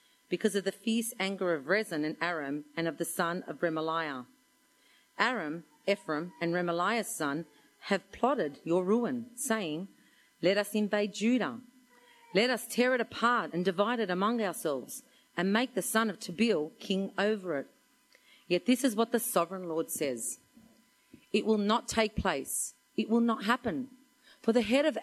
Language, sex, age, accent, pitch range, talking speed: English, female, 40-59, Australian, 165-235 Hz, 165 wpm